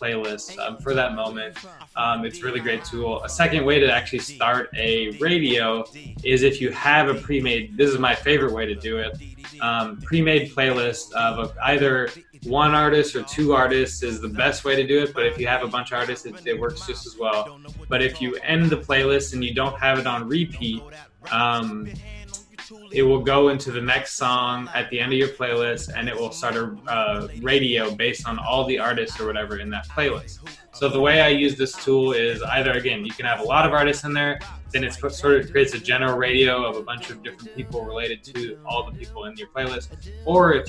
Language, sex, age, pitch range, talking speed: English, male, 20-39, 115-145 Hz, 220 wpm